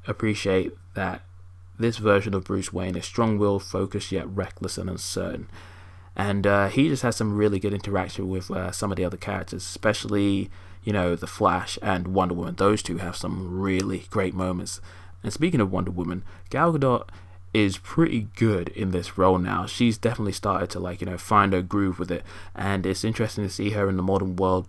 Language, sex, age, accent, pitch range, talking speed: English, male, 20-39, British, 90-100 Hz, 200 wpm